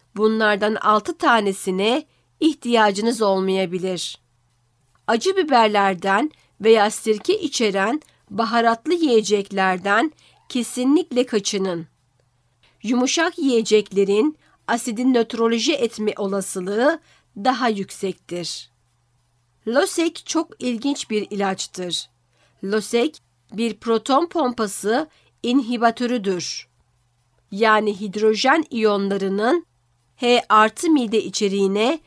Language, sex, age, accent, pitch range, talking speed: Turkish, female, 50-69, native, 190-245 Hz, 75 wpm